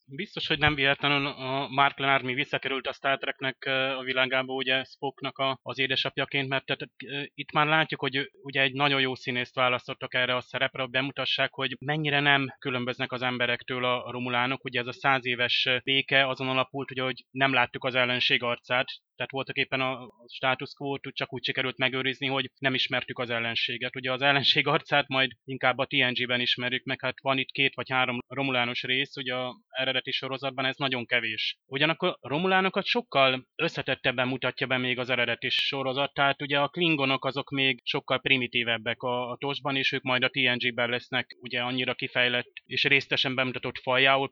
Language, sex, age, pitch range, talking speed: Hungarian, male, 20-39, 125-140 Hz, 175 wpm